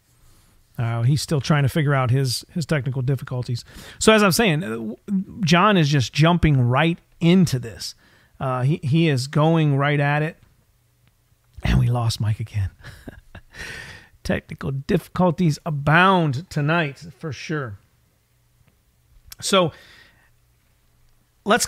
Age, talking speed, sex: 40-59, 115 wpm, male